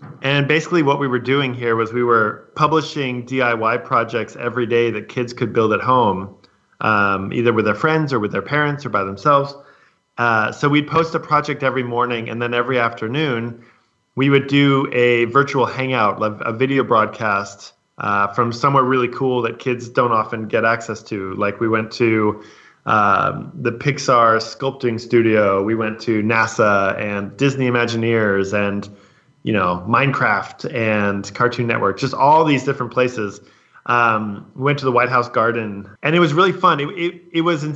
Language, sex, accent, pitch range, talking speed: English, male, American, 110-140 Hz, 180 wpm